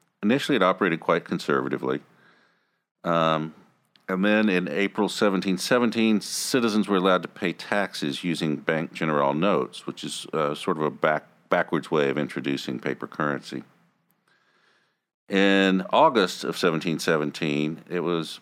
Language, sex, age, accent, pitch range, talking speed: English, male, 50-69, American, 75-100 Hz, 125 wpm